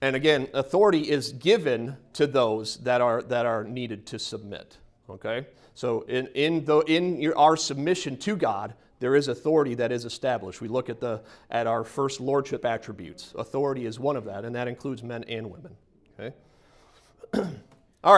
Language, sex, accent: English, male, American